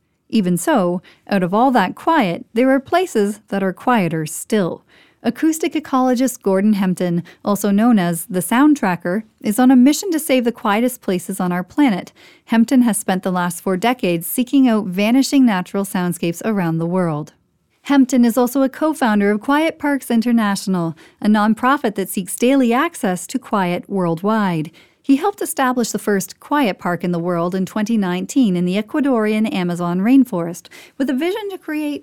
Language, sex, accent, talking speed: English, female, American, 170 wpm